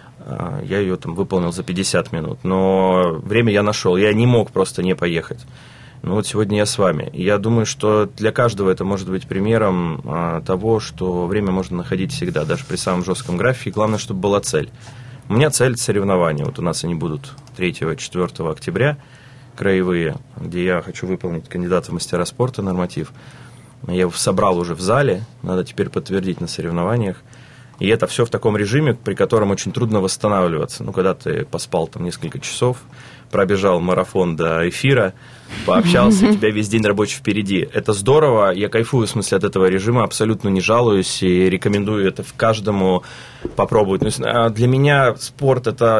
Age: 30-49